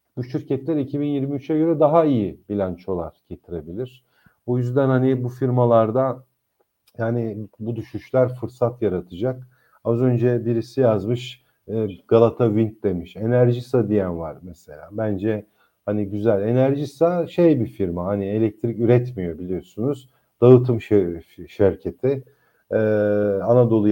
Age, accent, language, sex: 50-69, native, Turkish, male